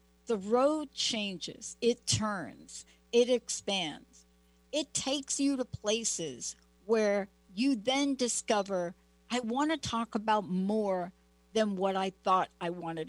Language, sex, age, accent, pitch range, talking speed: English, female, 60-79, American, 180-235 Hz, 130 wpm